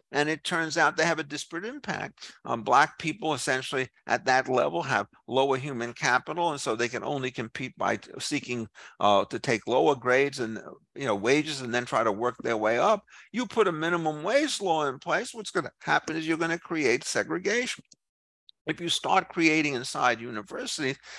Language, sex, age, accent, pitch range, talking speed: English, male, 60-79, American, 125-185 Hz, 200 wpm